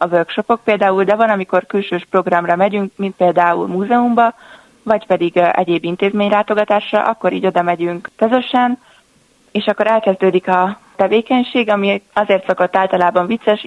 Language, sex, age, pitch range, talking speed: Hungarian, female, 20-39, 180-210 Hz, 135 wpm